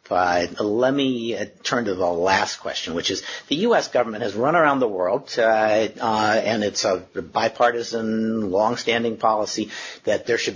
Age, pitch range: 50-69, 110-135 Hz